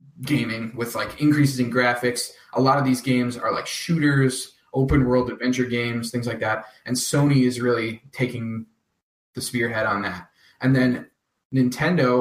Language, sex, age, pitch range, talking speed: English, male, 20-39, 115-135 Hz, 155 wpm